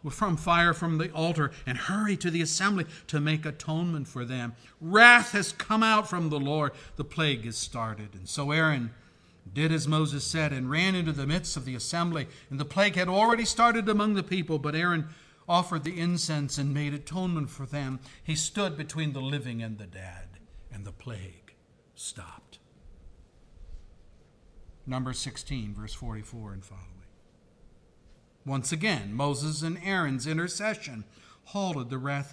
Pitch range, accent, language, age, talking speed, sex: 125-180 Hz, American, English, 60-79, 160 wpm, male